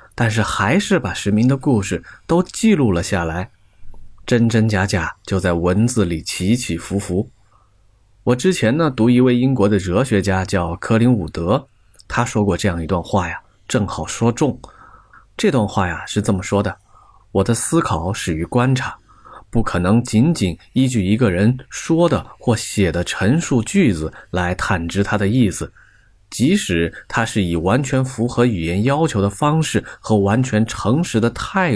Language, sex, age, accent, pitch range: Chinese, male, 20-39, native, 95-120 Hz